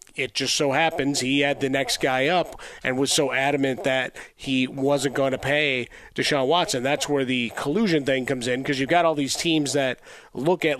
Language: English